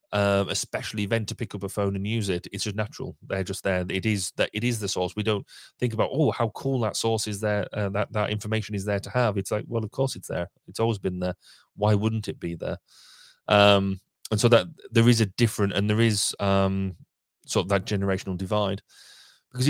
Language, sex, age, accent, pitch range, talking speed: English, male, 30-49, British, 95-110 Hz, 240 wpm